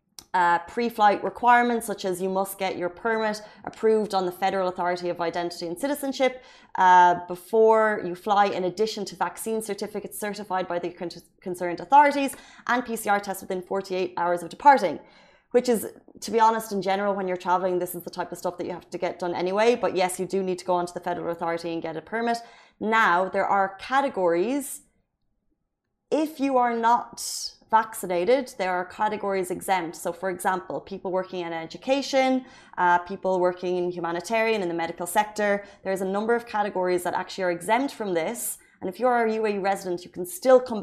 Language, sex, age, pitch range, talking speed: Arabic, female, 20-39, 175-220 Hz, 195 wpm